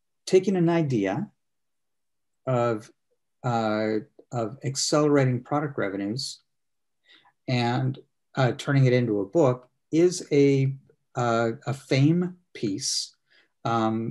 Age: 50-69